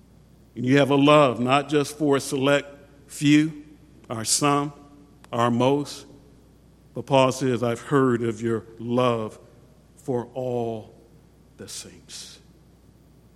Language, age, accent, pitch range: English, 50-69, American, 145-210 Hz